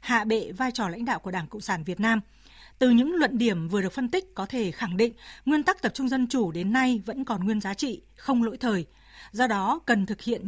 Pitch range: 205-250 Hz